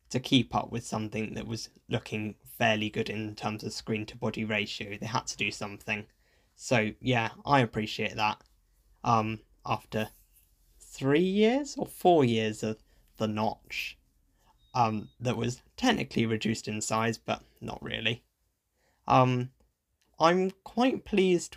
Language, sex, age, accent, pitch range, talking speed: English, male, 10-29, British, 110-130 Hz, 140 wpm